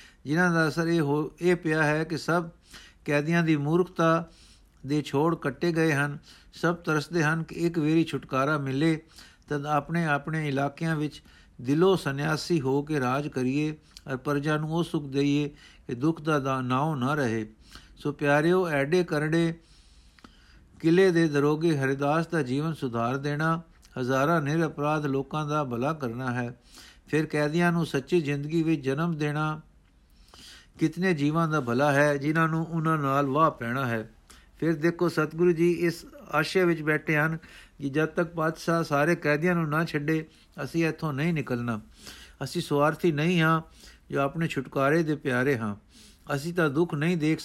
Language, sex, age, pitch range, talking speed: Punjabi, male, 60-79, 140-165 Hz, 160 wpm